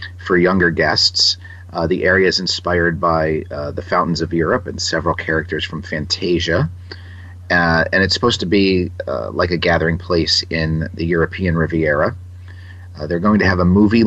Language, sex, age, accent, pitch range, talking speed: English, male, 40-59, American, 85-95 Hz, 175 wpm